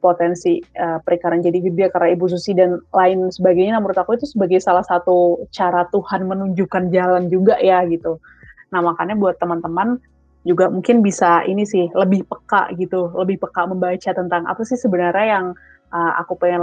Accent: native